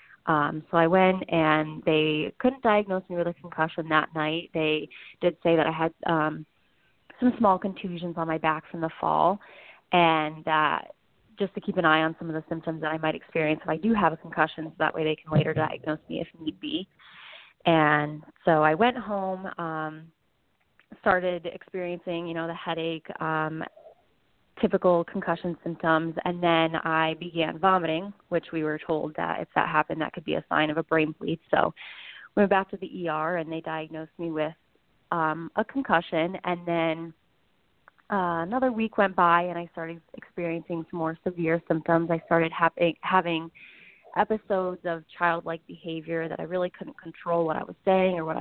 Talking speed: 185 wpm